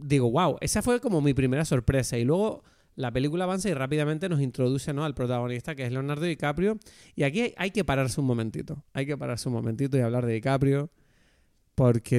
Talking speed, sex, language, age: 220 wpm, male, Spanish, 30-49